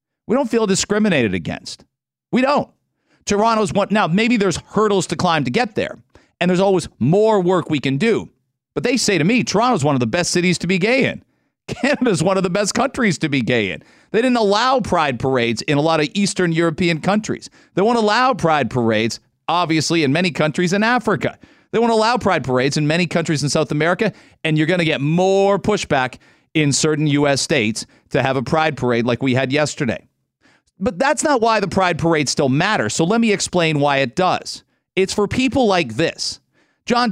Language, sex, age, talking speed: English, male, 40-59, 205 wpm